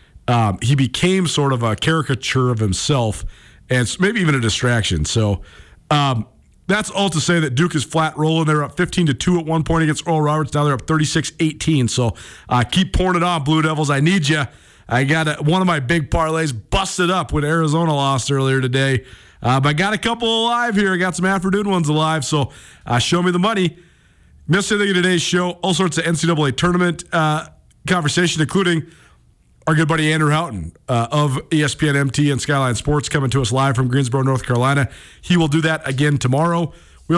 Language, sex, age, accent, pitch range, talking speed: English, male, 40-59, American, 135-175 Hz, 200 wpm